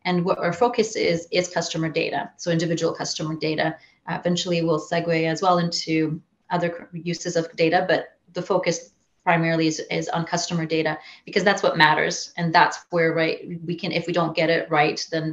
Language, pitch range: English, 160-175 Hz